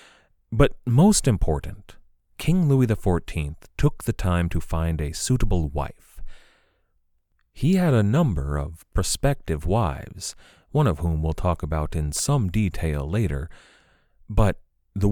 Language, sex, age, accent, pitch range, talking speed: English, male, 30-49, American, 80-115 Hz, 135 wpm